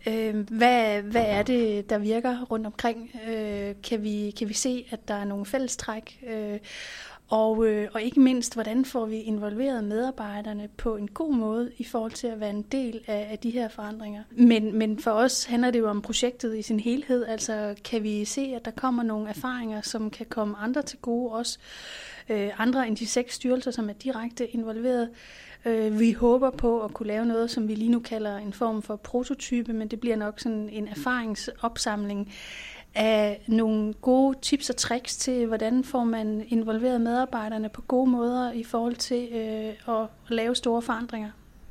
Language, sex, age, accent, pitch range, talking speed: Danish, female, 30-49, native, 215-245 Hz, 180 wpm